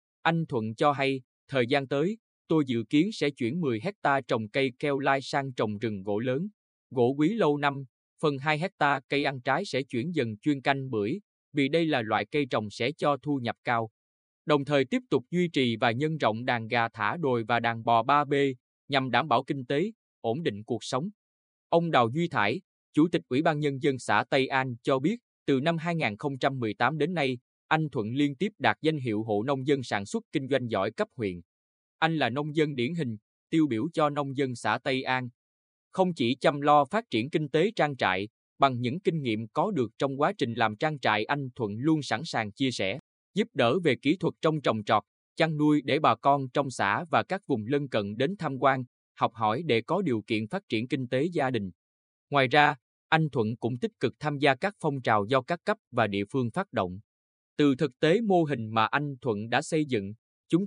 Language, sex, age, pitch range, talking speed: Vietnamese, male, 20-39, 115-155 Hz, 220 wpm